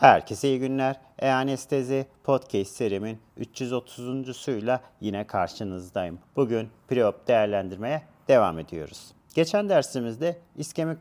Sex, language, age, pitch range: male, Turkish, 40-59, 115-135 Hz